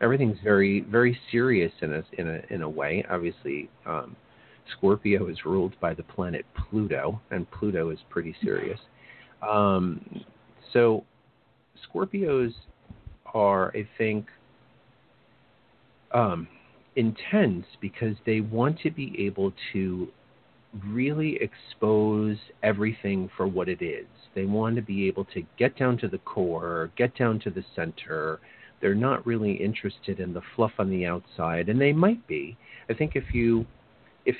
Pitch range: 90-120 Hz